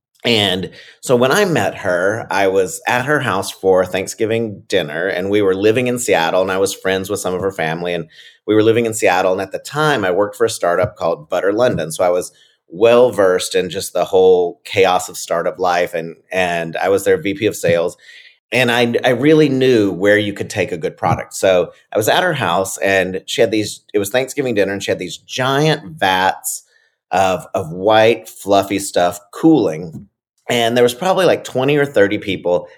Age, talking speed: 30-49, 210 wpm